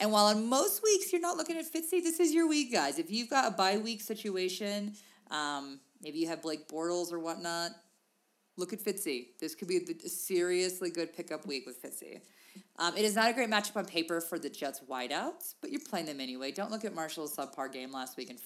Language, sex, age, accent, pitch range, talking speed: English, female, 30-49, American, 150-210 Hz, 230 wpm